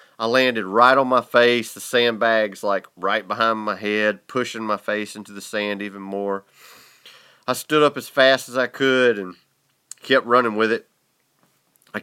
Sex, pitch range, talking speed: male, 105-125 Hz, 175 wpm